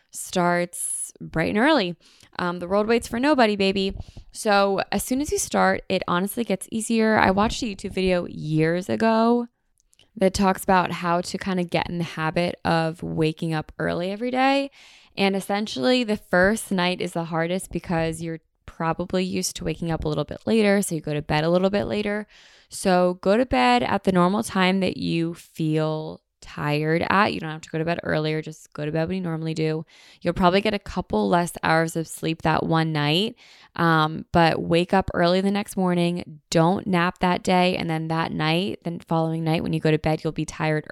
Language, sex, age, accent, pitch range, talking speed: English, female, 10-29, American, 160-200 Hz, 205 wpm